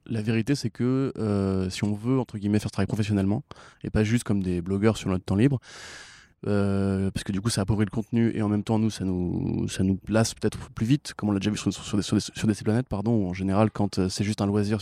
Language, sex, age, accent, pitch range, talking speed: French, male, 20-39, French, 100-115 Hz, 270 wpm